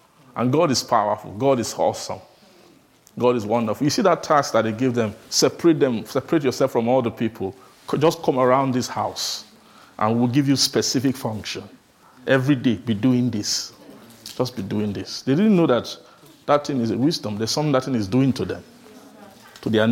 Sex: male